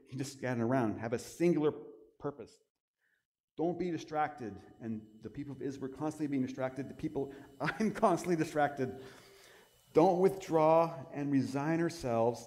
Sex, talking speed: male, 145 wpm